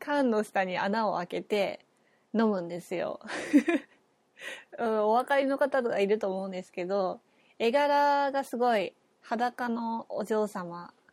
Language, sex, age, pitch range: Japanese, female, 20-39, 195-250 Hz